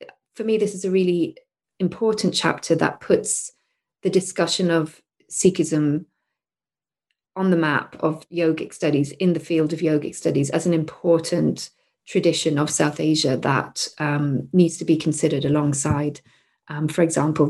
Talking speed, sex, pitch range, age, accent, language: 145 wpm, female, 150-175 Hz, 30-49, British, English